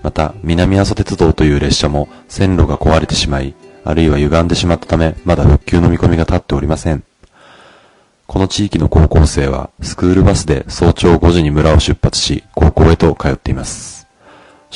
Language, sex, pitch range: Japanese, male, 75-90 Hz